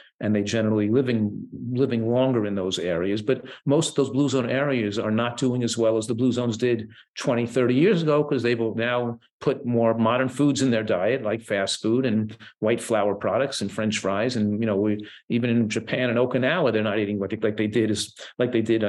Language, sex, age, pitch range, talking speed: English, male, 50-69, 105-125 Hz, 230 wpm